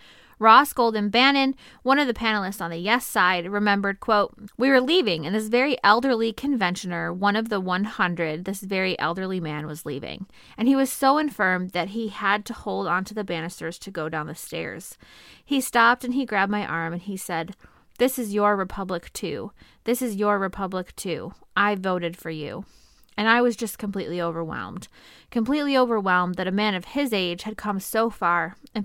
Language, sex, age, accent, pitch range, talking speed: English, female, 20-39, American, 180-230 Hz, 190 wpm